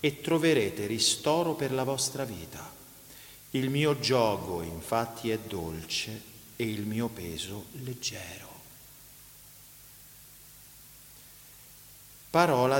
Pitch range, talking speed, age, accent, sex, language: 110-135 Hz, 90 wpm, 40-59, native, male, Italian